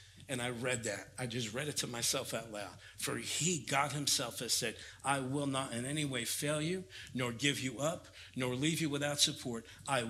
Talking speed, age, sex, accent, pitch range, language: 215 wpm, 50-69, male, American, 130-160 Hz, English